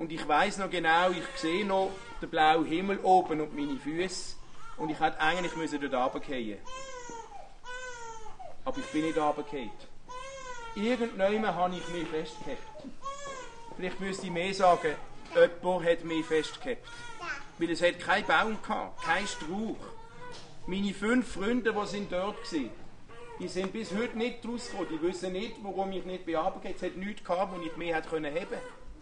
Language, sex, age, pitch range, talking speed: German, male, 40-59, 165-235 Hz, 165 wpm